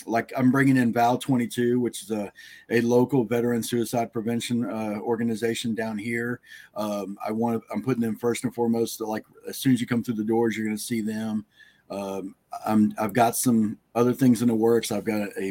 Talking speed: 205 wpm